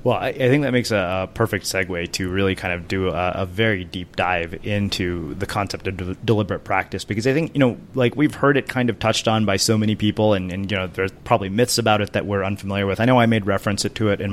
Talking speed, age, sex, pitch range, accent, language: 270 wpm, 30-49, male, 95-115 Hz, American, English